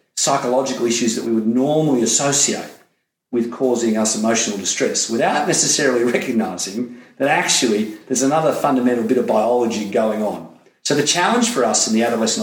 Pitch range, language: 110-135 Hz, English